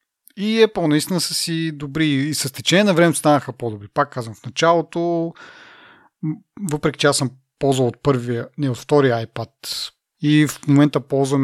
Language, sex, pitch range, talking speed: Bulgarian, male, 120-150 Hz, 175 wpm